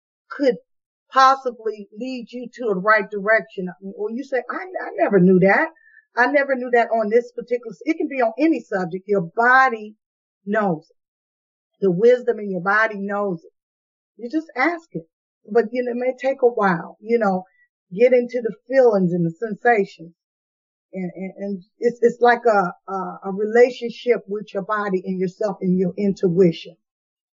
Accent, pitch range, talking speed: American, 190-240 Hz, 170 wpm